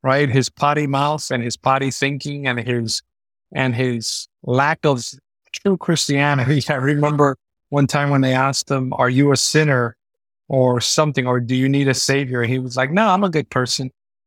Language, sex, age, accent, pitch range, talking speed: English, male, 50-69, American, 125-150 Hz, 185 wpm